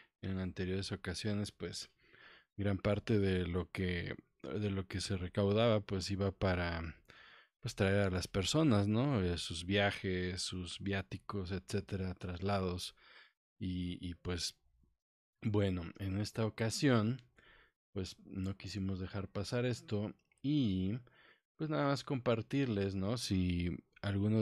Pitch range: 95-105 Hz